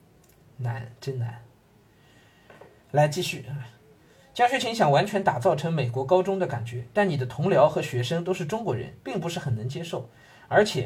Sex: male